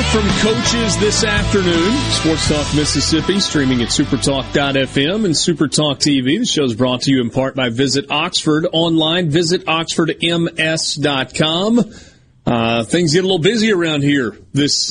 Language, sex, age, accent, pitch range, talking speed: English, male, 40-59, American, 125-155 Hz, 145 wpm